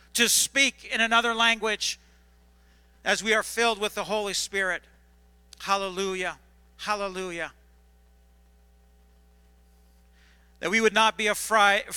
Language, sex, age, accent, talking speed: English, male, 50-69, American, 105 wpm